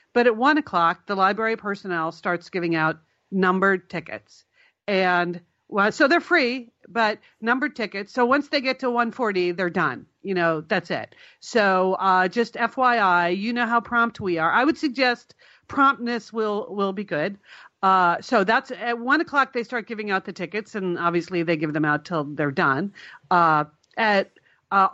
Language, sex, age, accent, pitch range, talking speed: English, female, 50-69, American, 175-225 Hz, 180 wpm